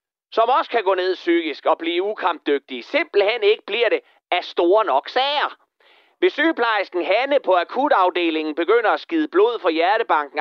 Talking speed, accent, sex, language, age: 160 wpm, native, male, Danish, 30-49